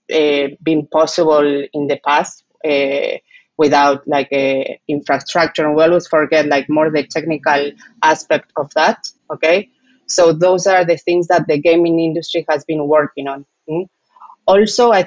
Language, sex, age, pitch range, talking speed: English, female, 20-39, 150-175 Hz, 155 wpm